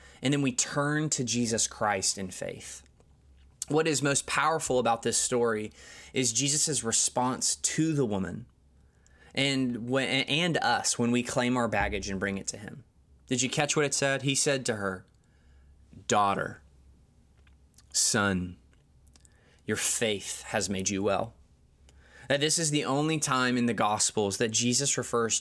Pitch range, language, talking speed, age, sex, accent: 80-130 Hz, English, 155 wpm, 20-39, male, American